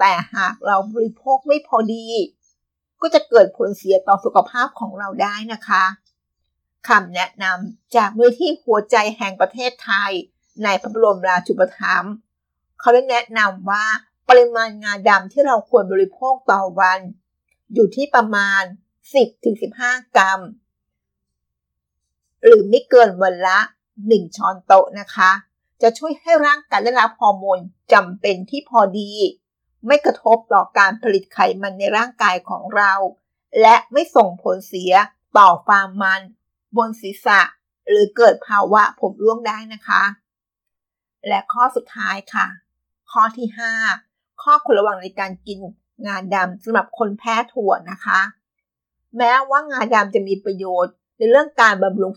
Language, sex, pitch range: Thai, female, 190-235 Hz